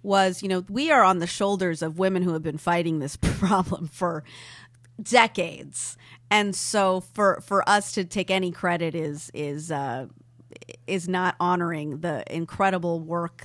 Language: English